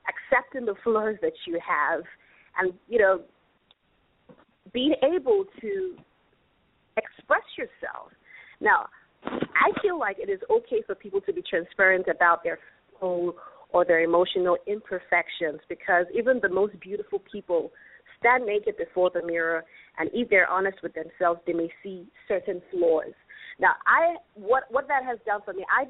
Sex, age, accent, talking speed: female, 30-49, American, 150 wpm